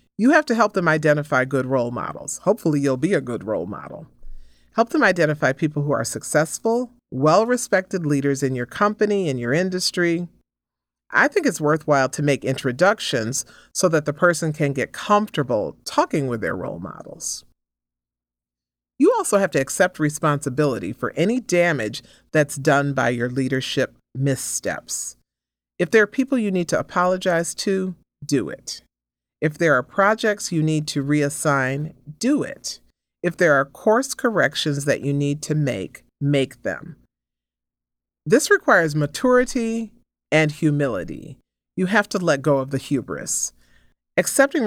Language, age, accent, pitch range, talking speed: English, 40-59, American, 125-180 Hz, 150 wpm